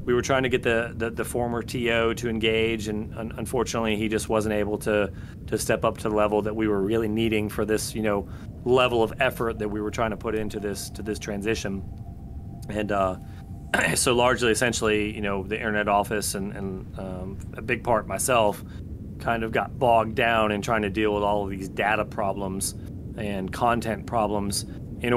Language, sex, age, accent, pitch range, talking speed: English, male, 30-49, American, 100-115 Hz, 205 wpm